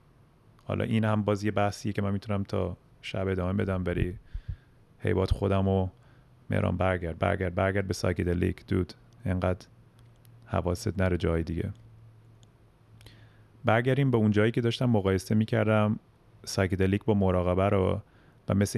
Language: Persian